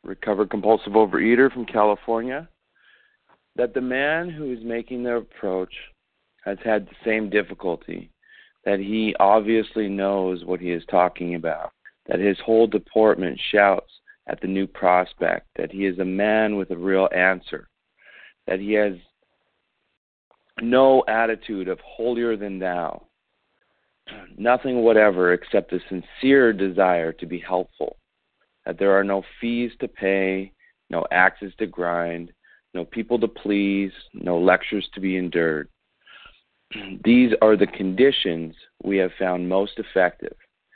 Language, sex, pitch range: English, male, 90-110 Hz